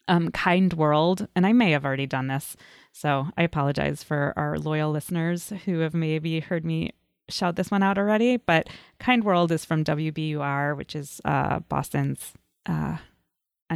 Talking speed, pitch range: 165 wpm, 150-200 Hz